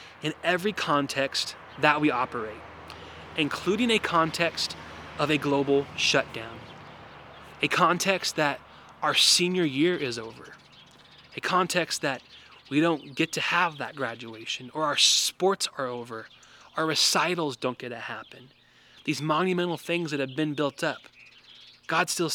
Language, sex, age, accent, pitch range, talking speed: English, male, 20-39, American, 135-175 Hz, 140 wpm